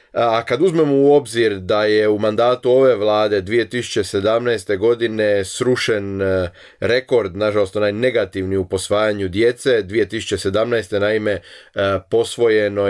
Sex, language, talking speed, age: male, Croatian, 105 wpm, 30-49